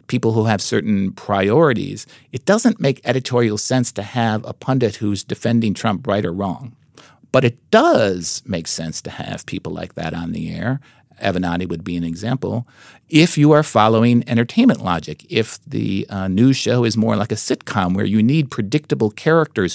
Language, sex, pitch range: English, male, 105-140 Hz